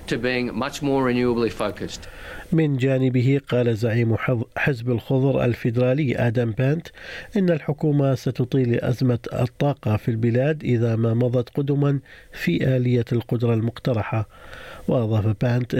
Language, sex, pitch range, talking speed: Arabic, male, 115-140 Hz, 120 wpm